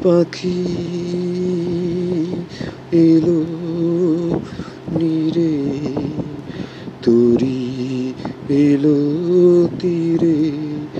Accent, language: native, Bengali